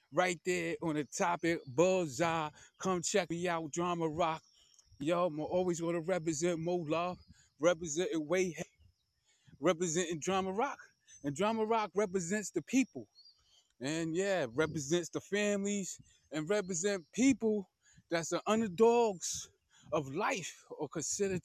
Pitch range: 165-210 Hz